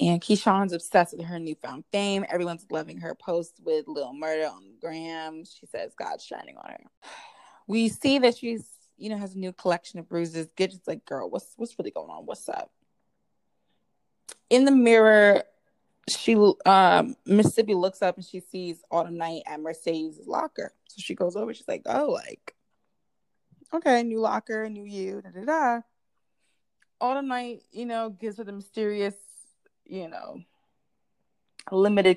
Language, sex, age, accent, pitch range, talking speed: English, female, 20-39, American, 170-225 Hz, 165 wpm